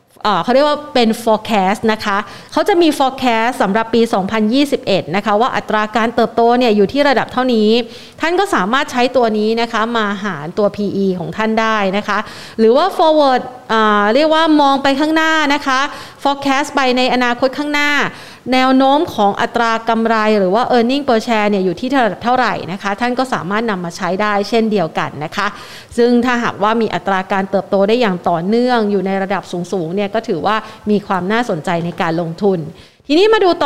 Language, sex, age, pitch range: Thai, female, 30-49, 200-255 Hz